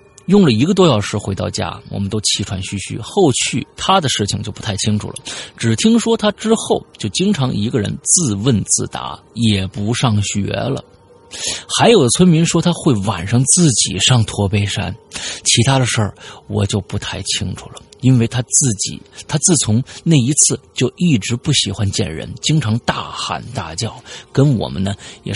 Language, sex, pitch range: Chinese, male, 105-140 Hz